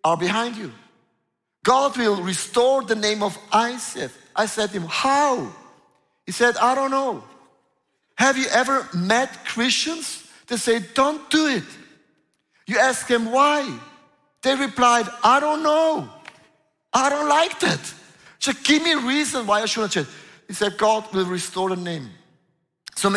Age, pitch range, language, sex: 50-69, 190-240 Hz, German, male